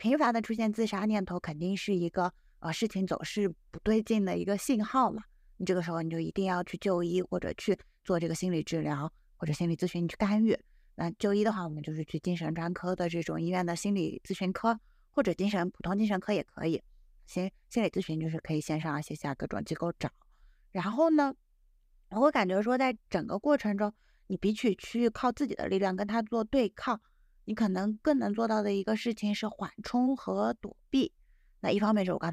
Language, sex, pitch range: Chinese, female, 170-220 Hz